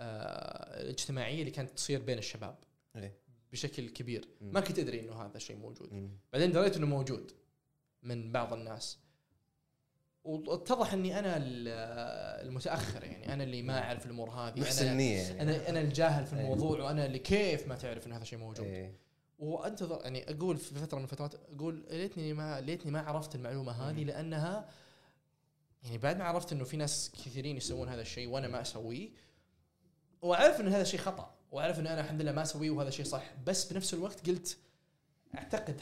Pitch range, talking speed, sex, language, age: 125-160 Hz, 160 wpm, male, Arabic, 20-39